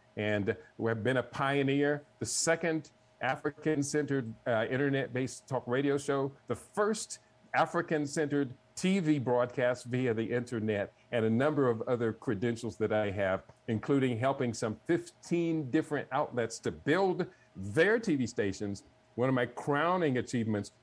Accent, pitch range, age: American, 115-145 Hz, 50-69